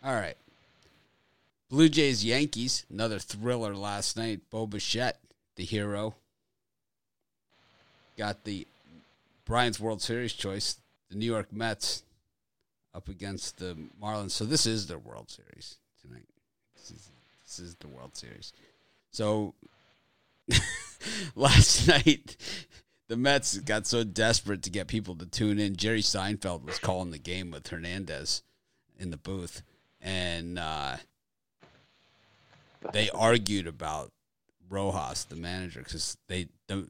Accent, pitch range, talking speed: American, 90-110 Hz, 125 wpm